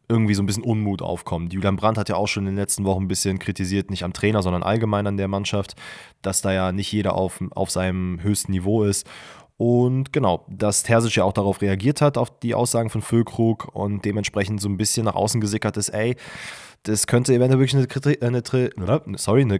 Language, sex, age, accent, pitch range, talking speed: German, male, 20-39, German, 95-115 Hz, 215 wpm